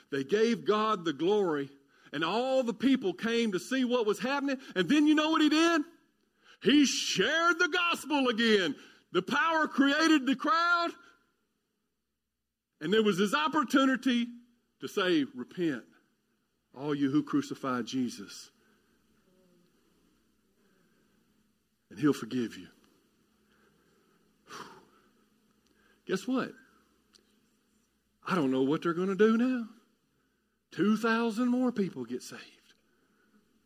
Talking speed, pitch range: 115 wpm, 195-280 Hz